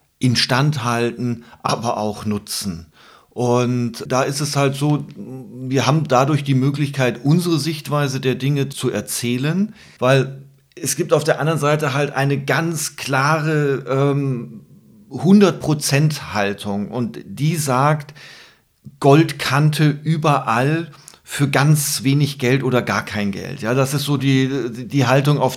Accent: German